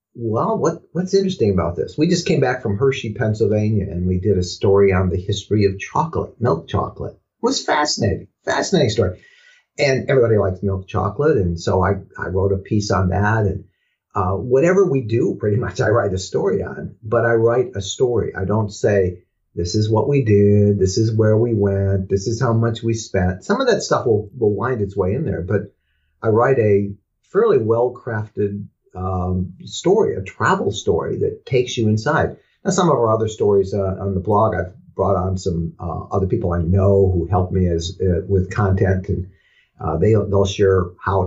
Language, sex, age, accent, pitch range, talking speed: English, male, 50-69, American, 95-110 Hz, 200 wpm